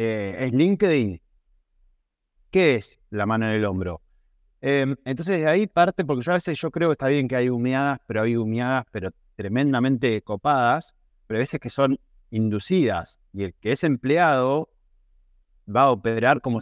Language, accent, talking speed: Spanish, Argentinian, 175 wpm